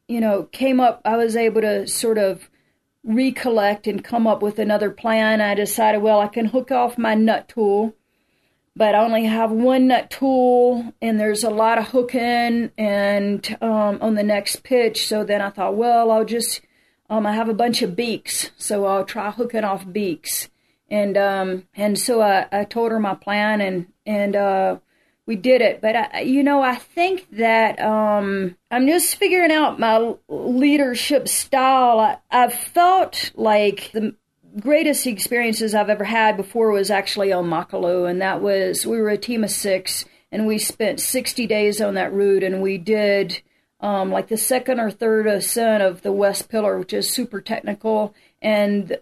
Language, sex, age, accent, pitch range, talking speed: English, female, 40-59, American, 205-240 Hz, 180 wpm